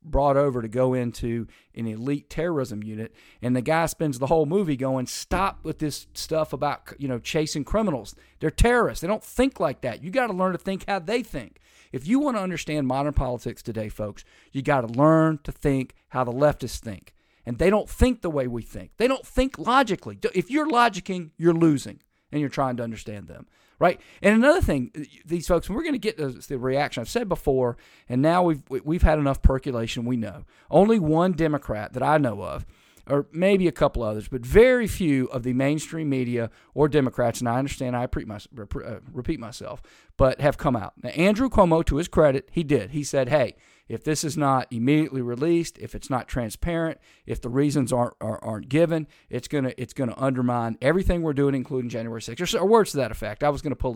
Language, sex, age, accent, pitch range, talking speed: English, male, 40-59, American, 120-160 Hz, 215 wpm